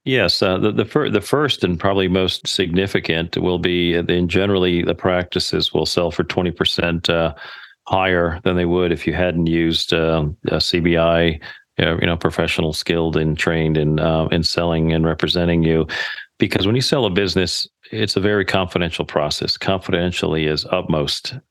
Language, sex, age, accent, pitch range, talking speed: English, male, 40-59, American, 80-90 Hz, 170 wpm